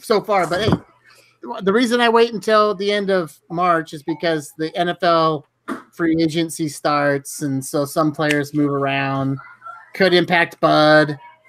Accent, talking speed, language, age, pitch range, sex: American, 150 wpm, English, 30-49, 145-180 Hz, male